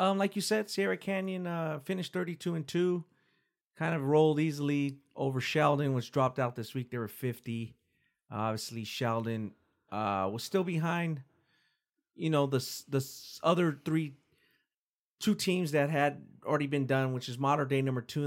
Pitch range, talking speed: 115-155 Hz, 170 wpm